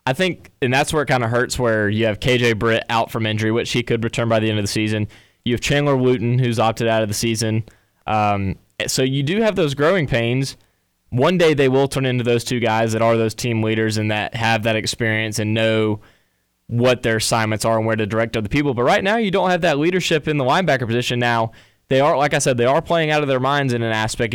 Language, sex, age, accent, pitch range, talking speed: English, male, 20-39, American, 110-130 Hz, 255 wpm